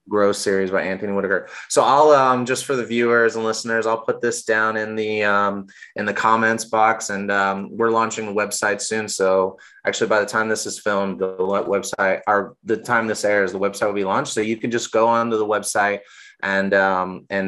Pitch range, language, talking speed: 105-125 Hz, English, 215 wpm